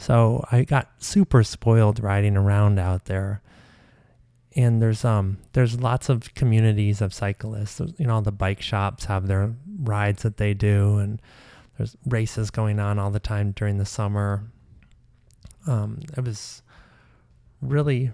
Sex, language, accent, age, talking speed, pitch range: male, English, American, 20-39, 150 wpm, 105-120 Hz